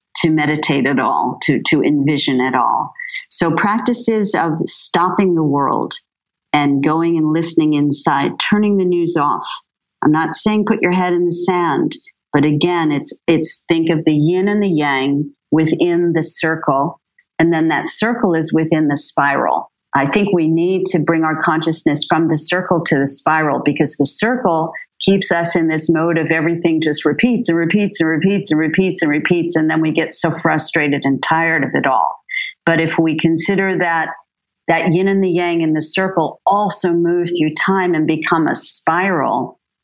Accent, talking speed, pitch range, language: American, 185 wpm, 155-175 Hz, English